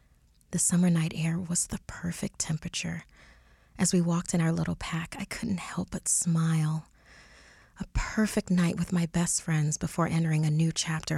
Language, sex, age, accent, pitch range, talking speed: English, female, 30-49, American, 150-185 Hz, 170 wpm